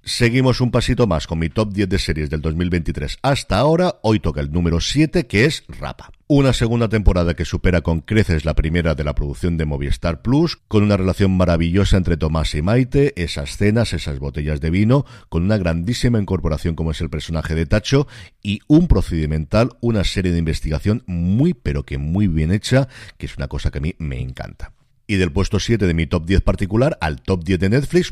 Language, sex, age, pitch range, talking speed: Spanish, male, 50-69, 80-115 Hz, 205 wpm